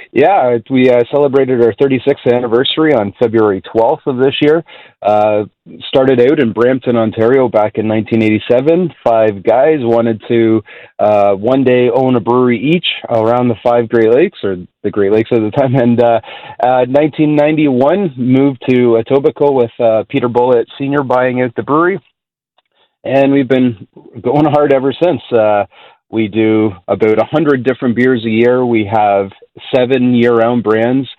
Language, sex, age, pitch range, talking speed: English, male, 30-49, 110-135 Hz, 160 wpm